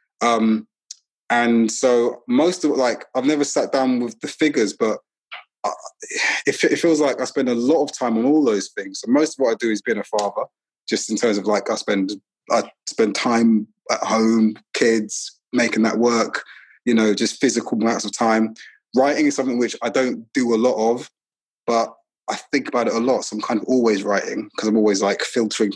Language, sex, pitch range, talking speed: English, male, 110-130 Hz, 210 wpm